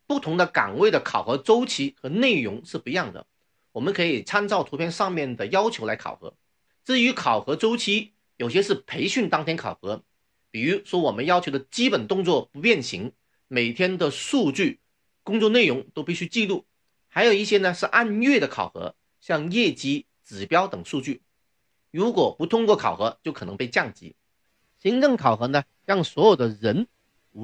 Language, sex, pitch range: Chinese, male, 140-230 Hz